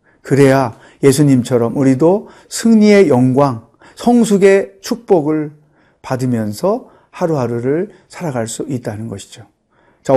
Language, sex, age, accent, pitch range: Korean, male, 40-59, native, 135-180 Hz